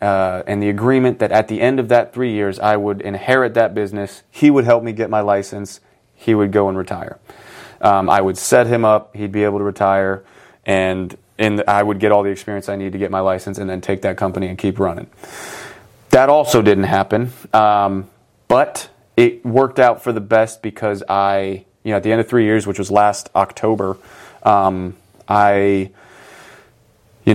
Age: 30-49